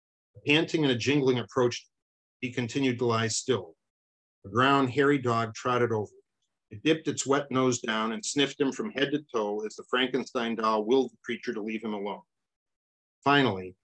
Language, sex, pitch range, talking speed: English, male, 110-130 Hz, 185 wpm